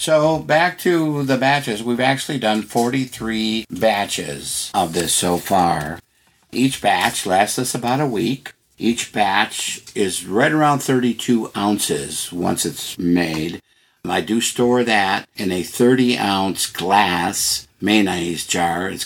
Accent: American